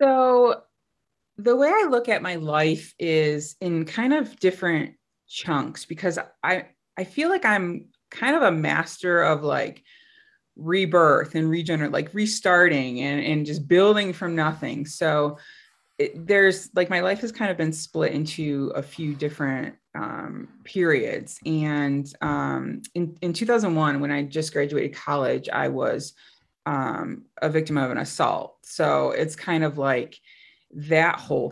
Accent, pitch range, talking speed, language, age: American, 145-190 Hz, 150 wpm, English, 20-39